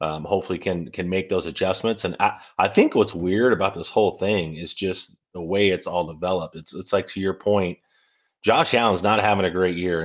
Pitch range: 90-105 Hz